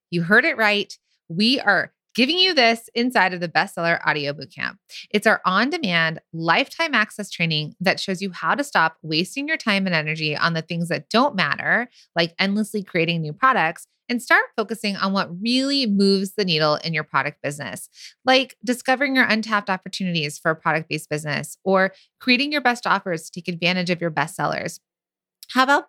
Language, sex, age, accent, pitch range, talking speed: English, female, 20-39, American, 170-230 Hz, 180 wpm